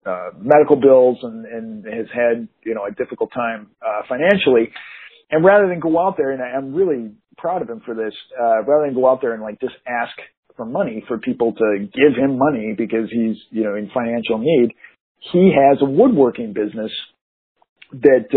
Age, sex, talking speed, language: 50-69, male, 195 wpm, English